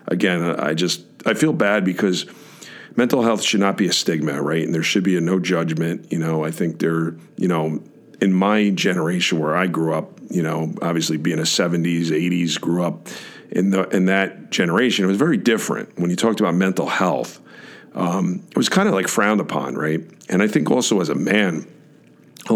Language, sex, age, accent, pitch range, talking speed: English, male, 50-69, American, 85-95 Hz, 205 wpm